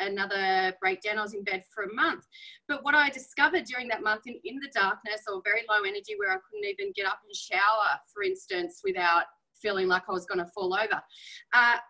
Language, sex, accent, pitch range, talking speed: English, female, Australian, 220-355 Hz, 220 wpm